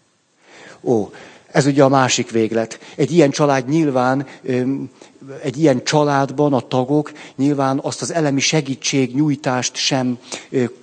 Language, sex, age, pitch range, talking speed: Hungarian, male, 50-69, 120-150 Hz, 115 wpm